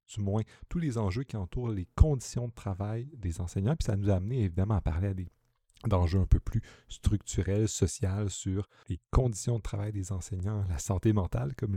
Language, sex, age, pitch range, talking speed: French, male, 40-59, 90-110 Hz, 205 wpm